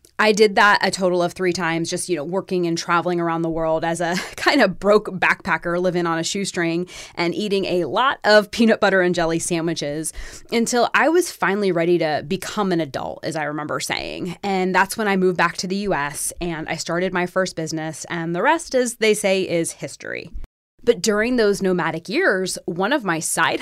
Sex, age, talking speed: female, 20-39, 210 wpm